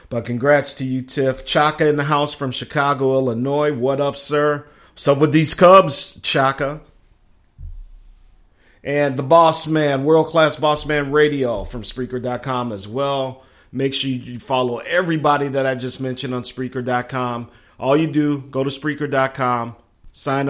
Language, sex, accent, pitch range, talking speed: English, male, American, 115-145 Hz, 150 wpm